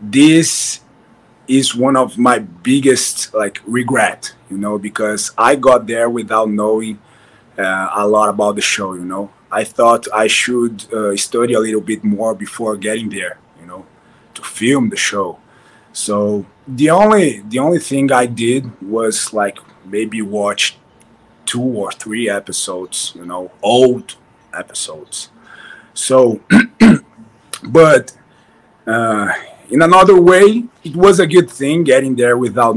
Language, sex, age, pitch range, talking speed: English, male, 30-49, 110-135 Hz, 140 wpm